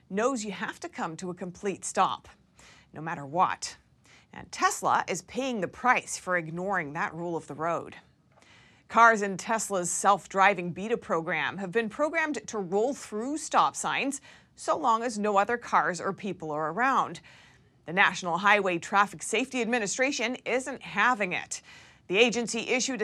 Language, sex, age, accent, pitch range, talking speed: English, female, 30-49, American, 180-240 Hz, 160 wpm